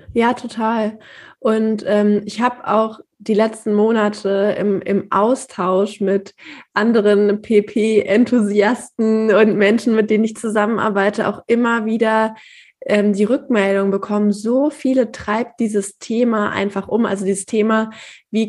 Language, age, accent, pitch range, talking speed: German, 20-39, German, 195-225 Hz, 130 wpm